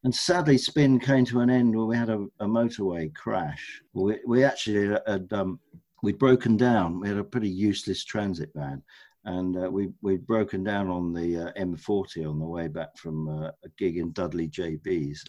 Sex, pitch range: male, 90-115 Hz